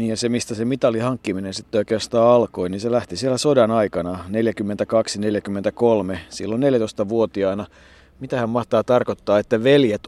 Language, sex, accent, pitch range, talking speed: Finnish, male, native, 100-120 Hz, 135 wpm